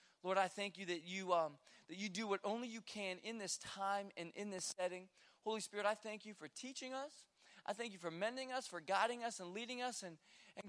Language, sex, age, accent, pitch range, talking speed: English, male, 20-39, American, 195-250 Hz, 230 wpm